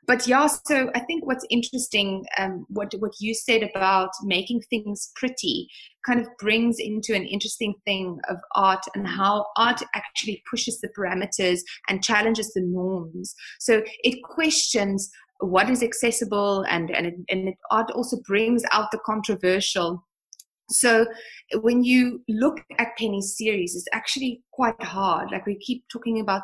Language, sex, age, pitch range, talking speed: English, female, 20-39, 190-235 Hz, 160 wpm